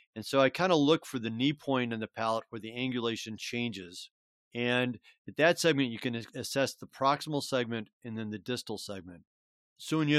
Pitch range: 105-130 Hz